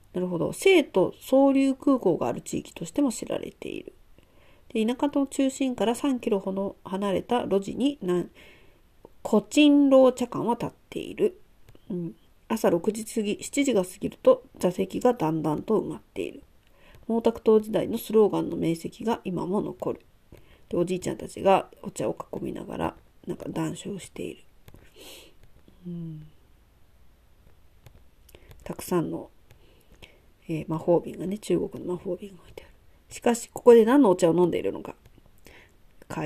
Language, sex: Japanese, female